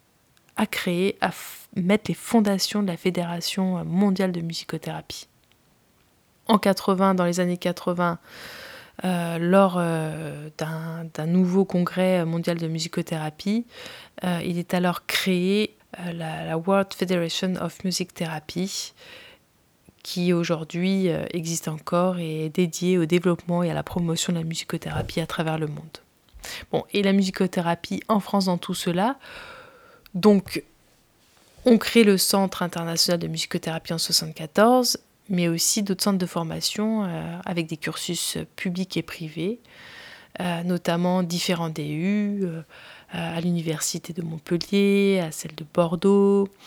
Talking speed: 140 wpm